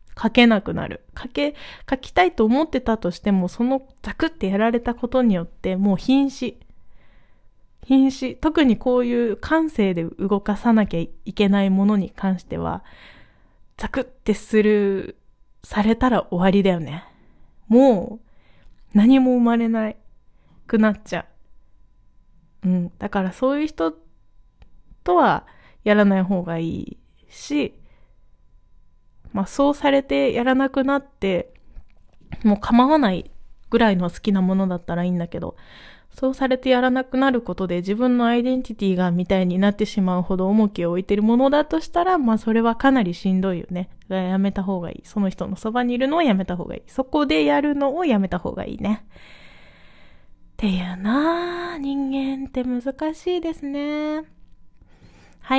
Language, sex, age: Japanese, female, 20-39